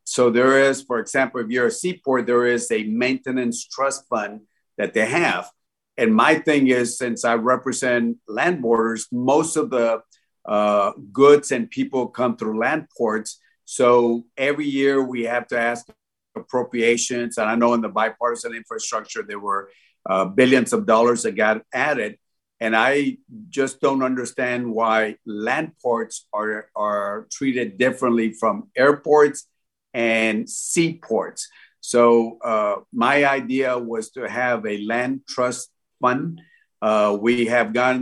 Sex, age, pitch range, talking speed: male, 50-69, 110-130 Hz, 145 wpm